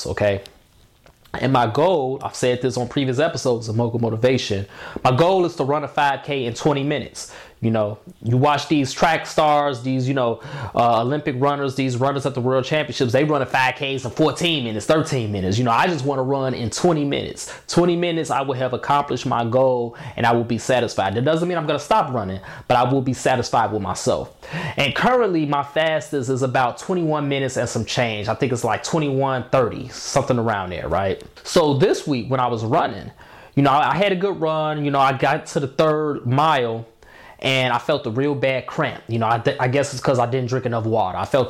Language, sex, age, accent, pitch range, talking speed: English, male, 20-39, American, 120-150 Hz, 220 wpm